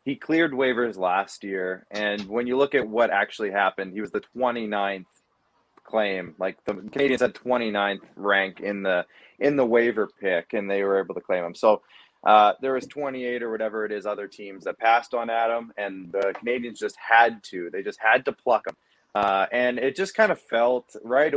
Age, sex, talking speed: 20-39, male, 200 wpm